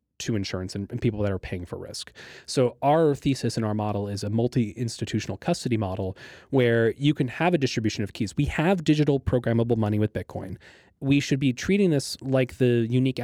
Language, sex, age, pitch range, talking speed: English, male, 20-39, 110-140 Hz, 195 wpm